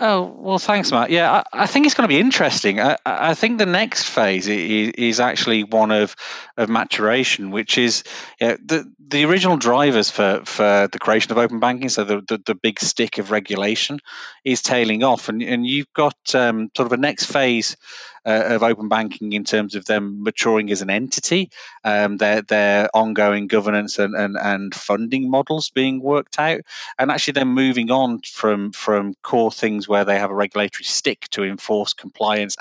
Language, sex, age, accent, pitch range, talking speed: English, male, 30-49, British, 105-130 Hz, 190 wpm